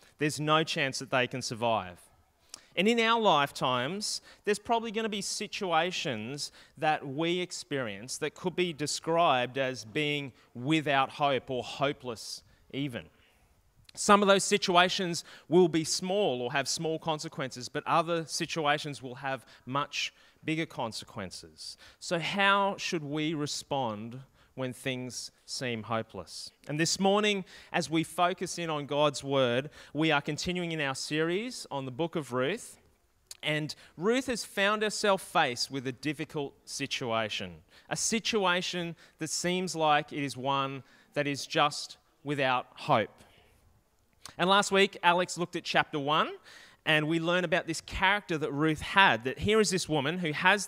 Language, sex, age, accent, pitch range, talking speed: English, male, 30-49, Australian, 130-180 Hz, 150 wpm